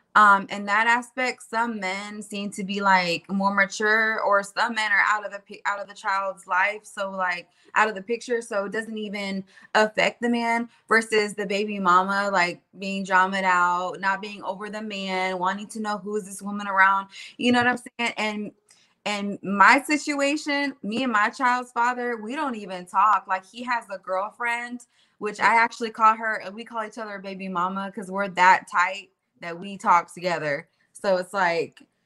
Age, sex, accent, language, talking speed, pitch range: 20-39, female, American, English, 195 wpm, 190-220 Hz